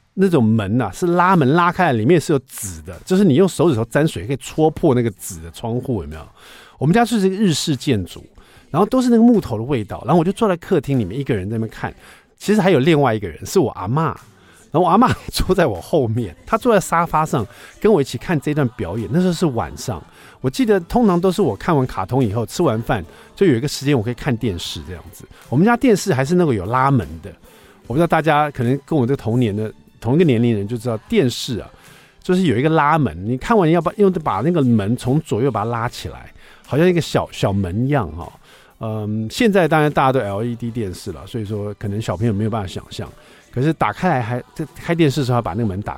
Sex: male